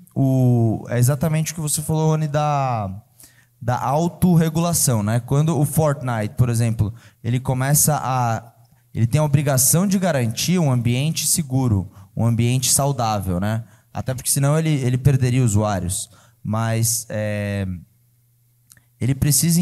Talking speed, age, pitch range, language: 135 wpm, 20-39, 120-150 Hz, Portuguese